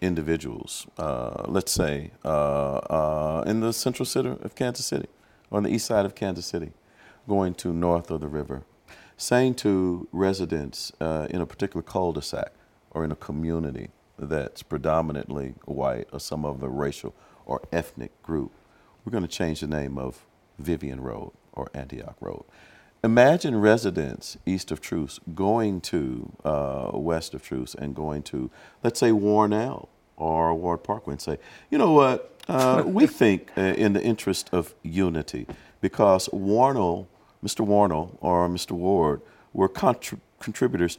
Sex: male